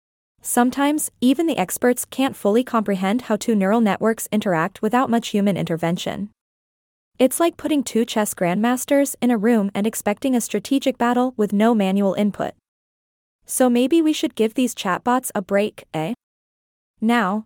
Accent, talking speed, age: American, 155 wpm, 20-39